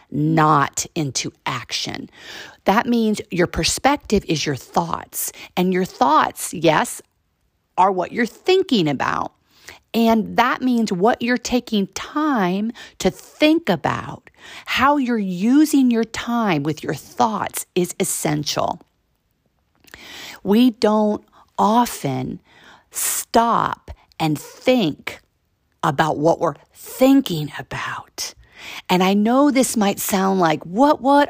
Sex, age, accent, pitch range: female, 50-69, American, 155-240 Hz